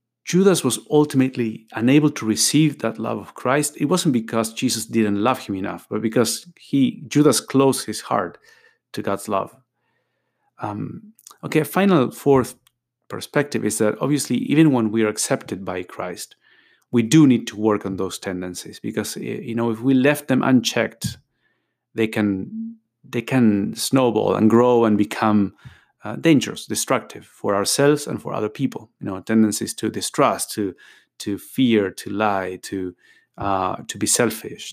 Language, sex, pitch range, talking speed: English, male, 105-130 Hz, 160 wpm